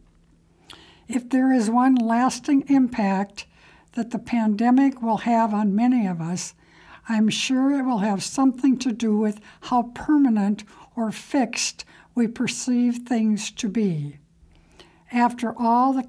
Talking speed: 135 wpm